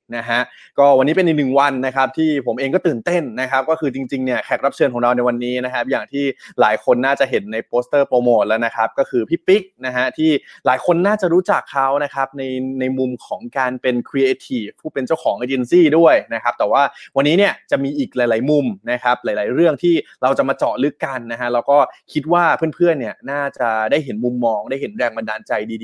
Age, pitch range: 20-39, 125-160 Hz